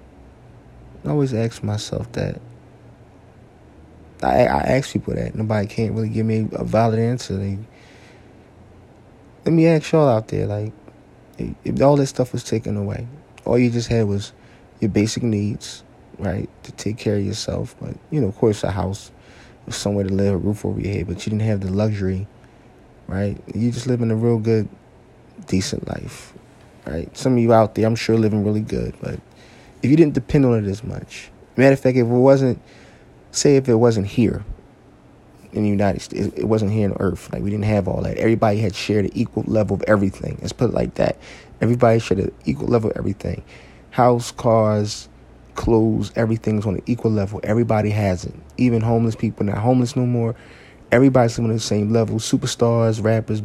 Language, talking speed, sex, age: English, 190 wpm, male, 20-39